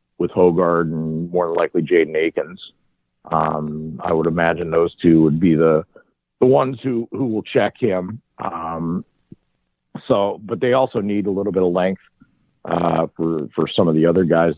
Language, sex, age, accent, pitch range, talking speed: English, male, 50-69, American, 80-100 Hz, 170 wpm